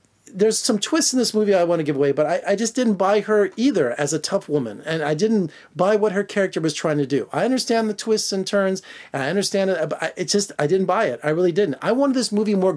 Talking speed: 275 wpm